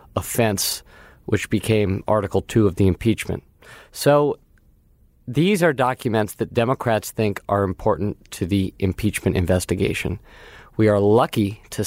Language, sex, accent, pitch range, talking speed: English, male, American, 100-120 Hz, 125 wpm